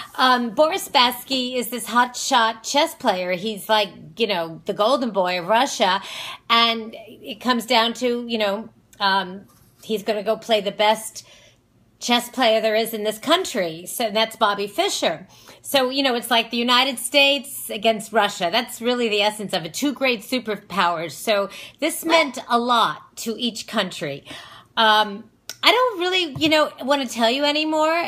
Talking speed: 170 wpm